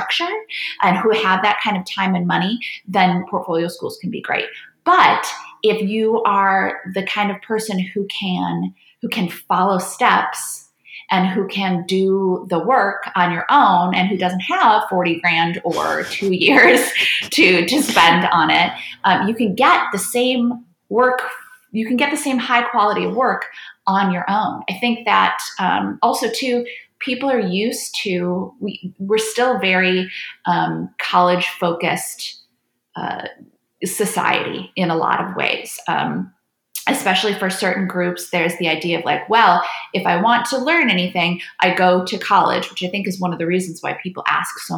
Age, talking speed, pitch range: 20-39, 170 wpm, 180-220 Hz